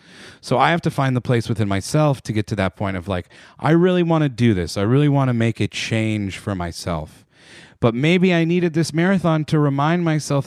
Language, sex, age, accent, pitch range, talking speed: English, male, 30-49, American, 115-145 Hz, 230 wpm